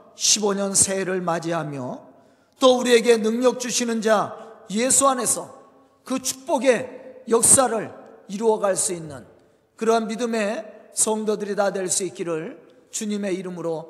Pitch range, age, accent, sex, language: 210-260 Hz, 40-59, native, male, Korean